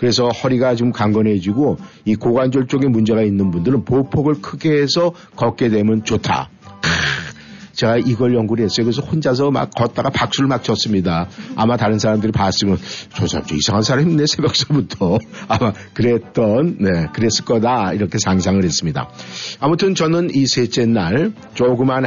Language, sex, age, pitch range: Korean, male, 50-69, 105-140 Hz